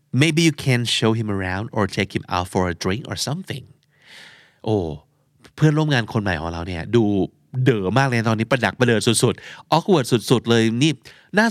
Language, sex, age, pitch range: Thai, male, 30-49, 110-150 Hz